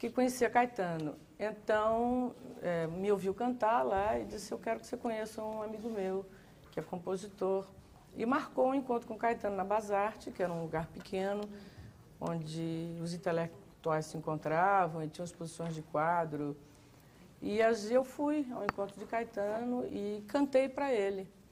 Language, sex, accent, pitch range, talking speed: Portuguese, female, Brazilian, 175-230 Hz, 160 wpm